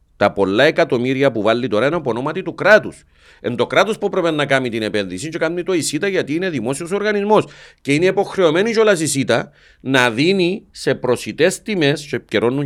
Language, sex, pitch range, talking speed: Greek, male, 110-160 Hz, 180 wpm